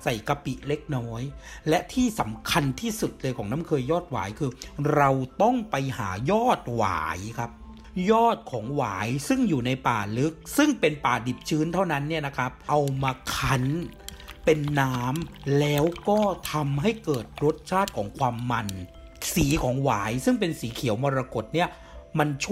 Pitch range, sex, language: 120-160 Hz, male, Thai